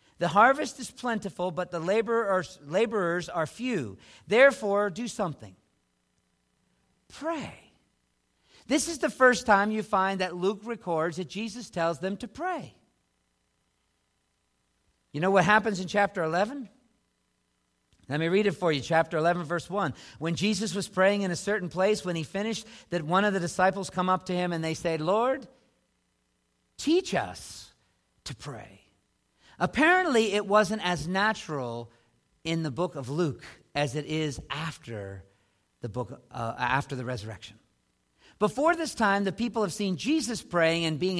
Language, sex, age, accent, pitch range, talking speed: English, male, 50-69, American, 140-200 Hz, 155 wpm